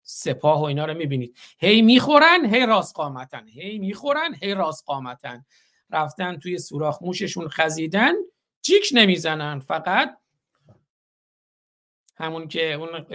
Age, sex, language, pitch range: 50-69, male, Persian, 155-230 Hz